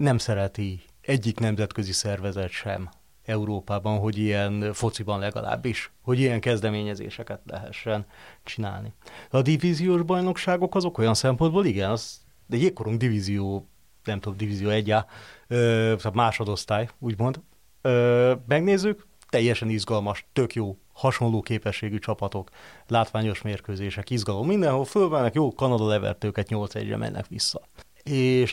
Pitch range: 105-130 Hz